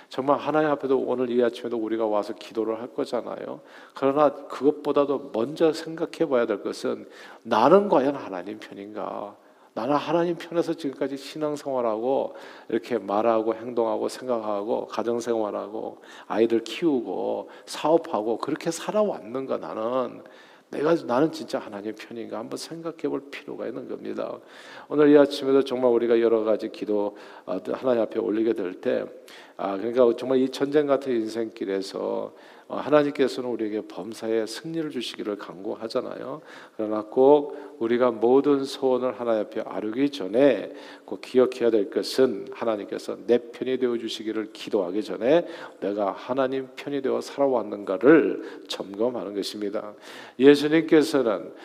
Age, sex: 50-69, male